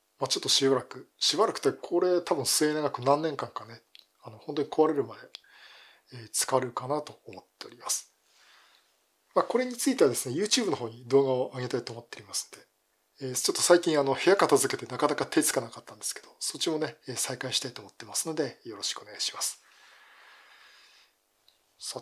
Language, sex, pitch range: Japanese, male, 130-175 Hz